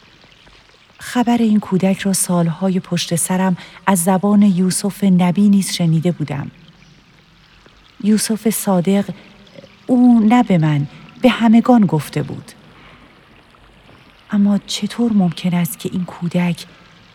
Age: 40-59